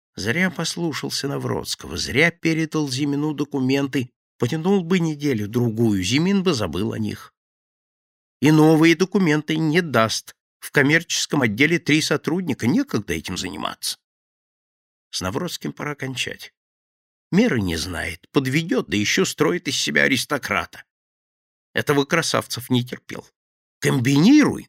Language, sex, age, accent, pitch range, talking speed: Russian, male, 50-69, native, 115-165 Hz, 115 wpm